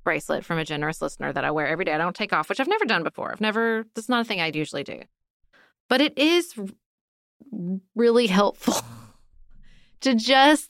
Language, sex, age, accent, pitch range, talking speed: English, female, 30-49, American, 170-215 Hz, 195 wpm